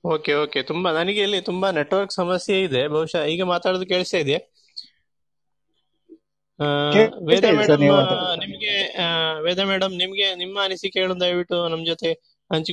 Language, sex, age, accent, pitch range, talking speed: English, male, 20-39, Indian, 155-185 Hz, 120 wpm